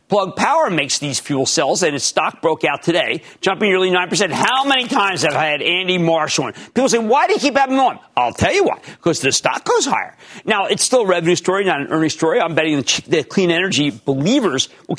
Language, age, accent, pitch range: English, 50-69, American, 150-200 Hz